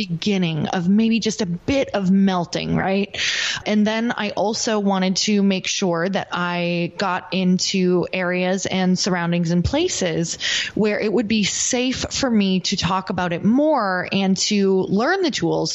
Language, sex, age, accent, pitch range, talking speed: English, female, 20-39, American, 175-220 Hz, 165 wpm